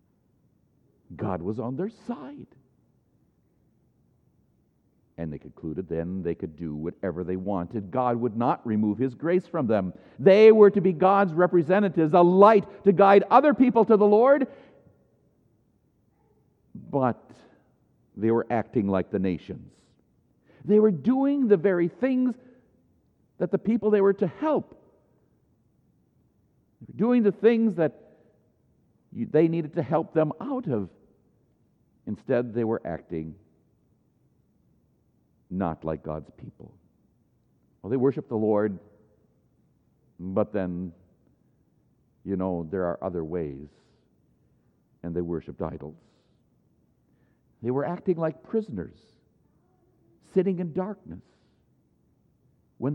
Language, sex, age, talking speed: English, male, 60-79, 120 wpm